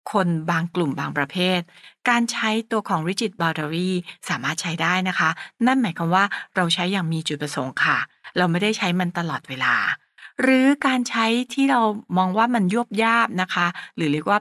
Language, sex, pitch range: English, female, 170-220 Hz